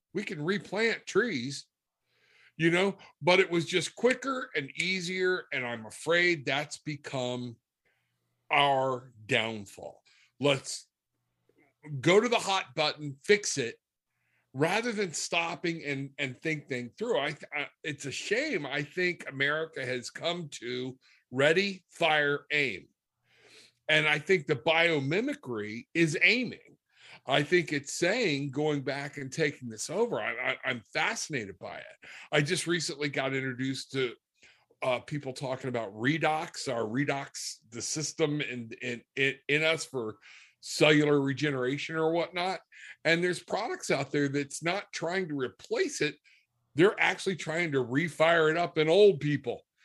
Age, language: 50-69, English